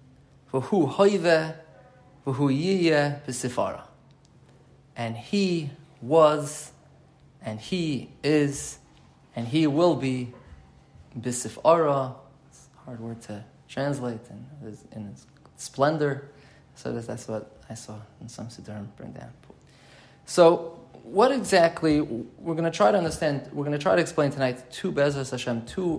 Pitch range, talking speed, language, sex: 125-150 Hz, 115 wpm, English, male